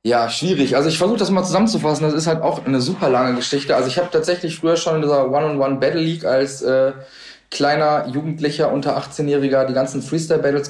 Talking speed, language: 195 wpm, German